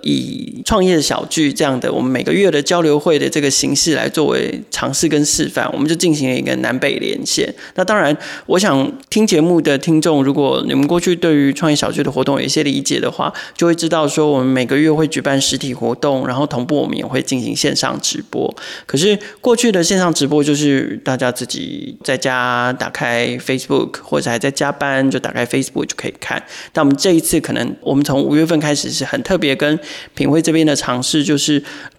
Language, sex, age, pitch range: Chinese, male, 20-39, 140-175 Hz